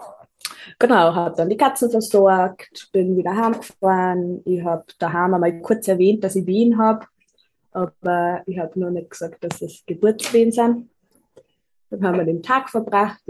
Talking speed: 160 wpm